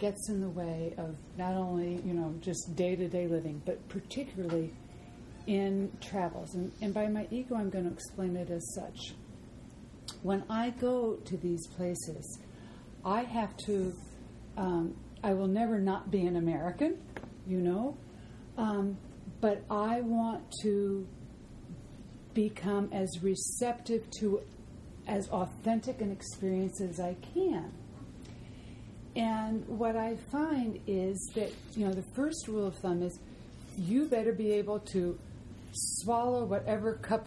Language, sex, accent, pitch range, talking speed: English, female, American, 175-225 Hz, 140 wpm